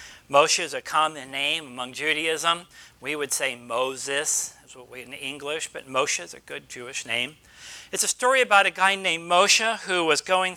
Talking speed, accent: 195 wpm, American